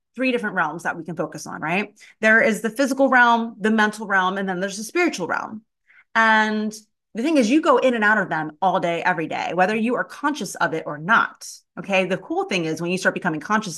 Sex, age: female, 30-49